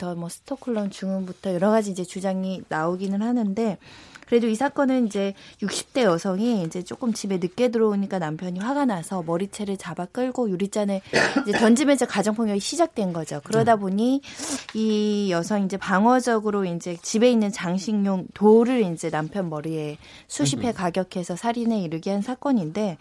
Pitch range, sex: 180-235 Hz, female